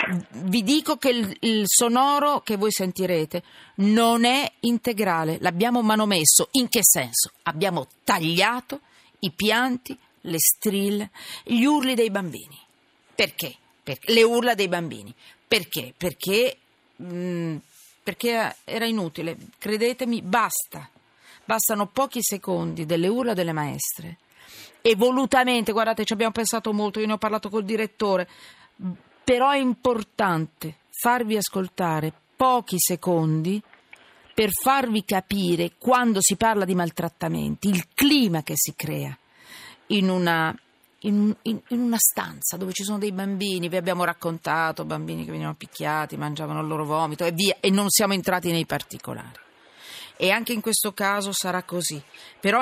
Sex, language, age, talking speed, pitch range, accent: female, Italian, 40-59, 135 wpm, 175-230 Hz, native